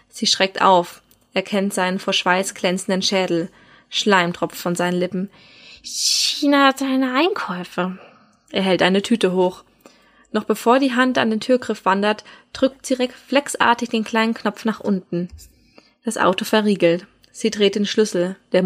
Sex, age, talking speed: female, 20-39, 150 wpm